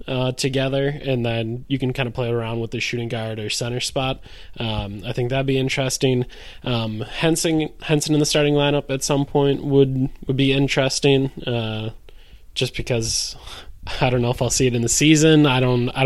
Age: 20-39